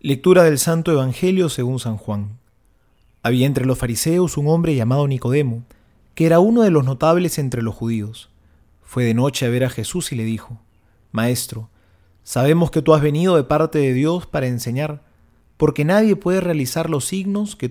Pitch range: 115-160 Hz